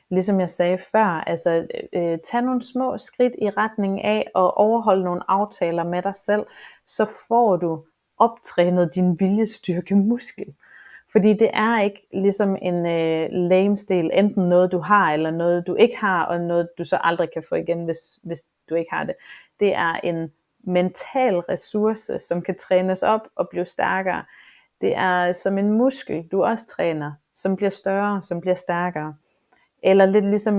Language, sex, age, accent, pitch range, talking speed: Danish, female, 30-49, native, 175-210 Hz, 165 wpm